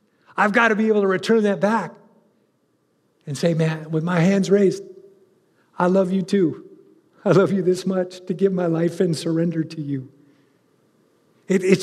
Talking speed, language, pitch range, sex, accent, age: 170 wpm, English, 145-195 Hz, male, American, 50-69